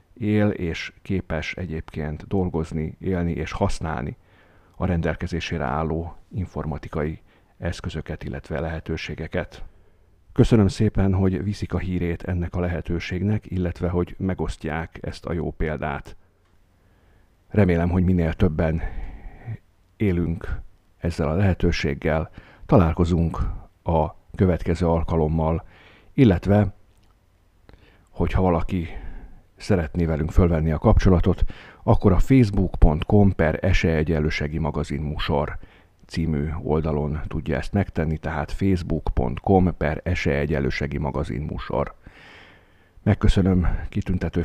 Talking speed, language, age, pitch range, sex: 95 wpm, Hungarian, 50-69, 80-95 Hz, male